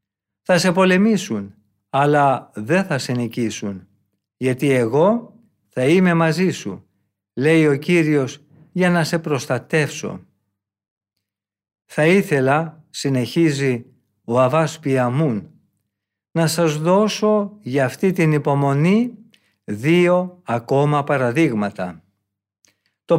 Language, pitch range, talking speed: Greek, 125-180 Hz, 100 wpm